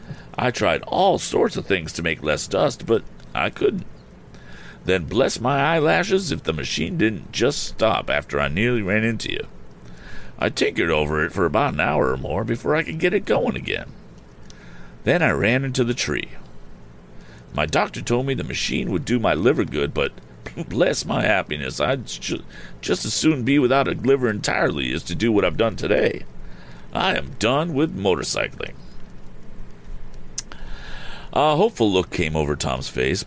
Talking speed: 170 wpm